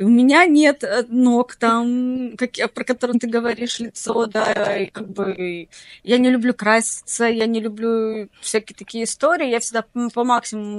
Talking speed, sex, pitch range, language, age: 165 wpm, female, 215-260 Hz, Russian, 20-39